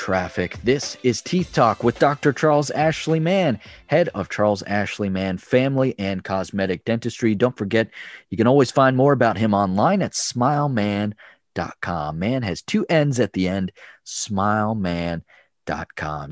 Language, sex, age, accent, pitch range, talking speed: English, male, 30-49, American, 95-125 Hz, 145 wpm